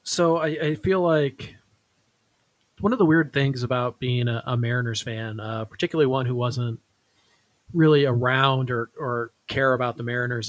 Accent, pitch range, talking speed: American, 115-140 Hz, 165 wpm